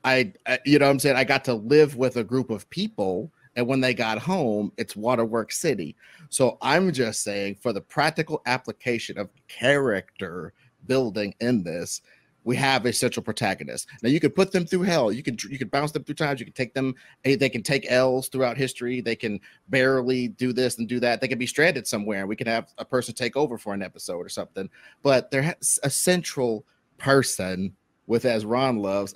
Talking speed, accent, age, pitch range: 210 wpm, American, 30-49, 105-130 Hz